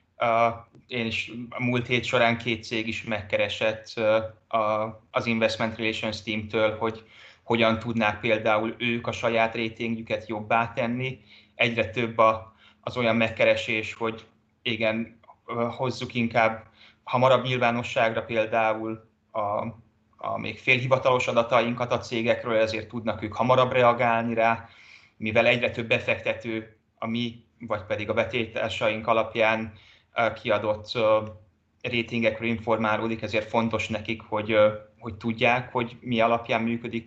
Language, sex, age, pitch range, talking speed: Hungarian, male, 20-39, 110-115 Hz, 125 wpm